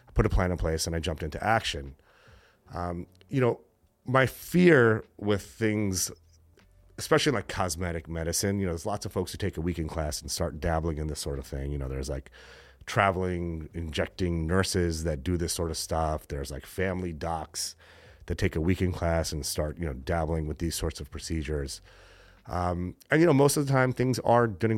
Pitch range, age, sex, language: 80-95 Hz, 30-49, male, English